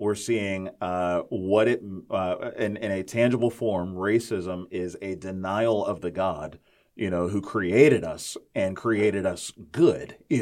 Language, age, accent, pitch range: English, 30-49, American, 90-115 Hz